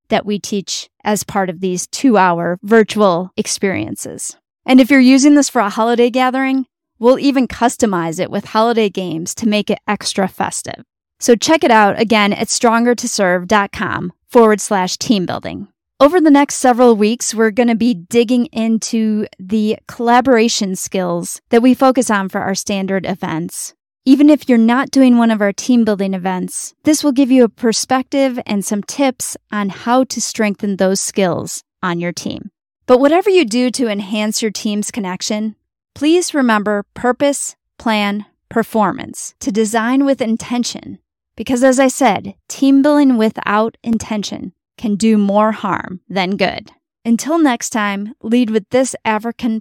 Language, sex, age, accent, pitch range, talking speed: English, female, 20-39, American, 200-250 Hz, 160 wpm